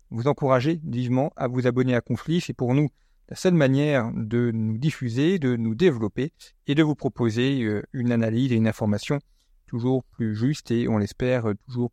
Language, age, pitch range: French, 40-59, 115-150 Hz